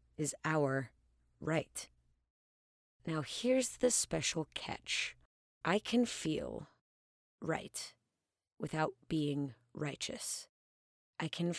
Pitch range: 120-175 Hz